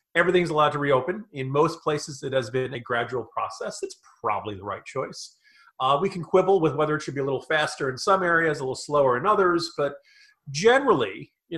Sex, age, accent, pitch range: male, 40-59, American, 135-190 Hz